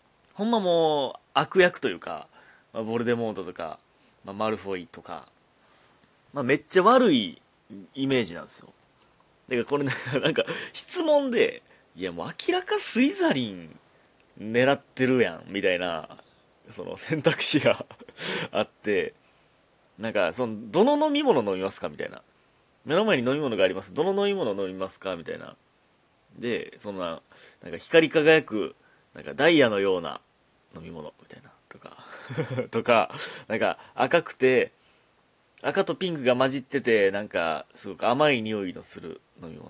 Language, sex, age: Japanese, male, 30-49